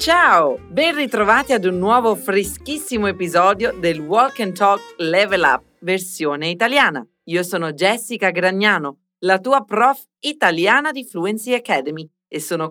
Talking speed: 135 wpm